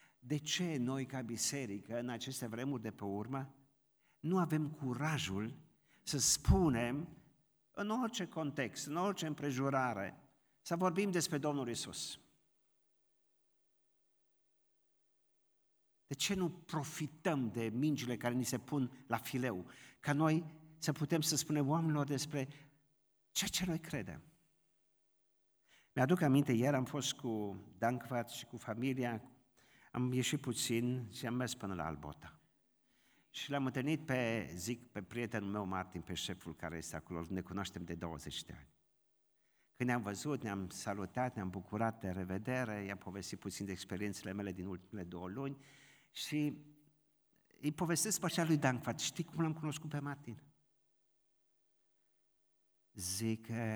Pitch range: 105-150 Hz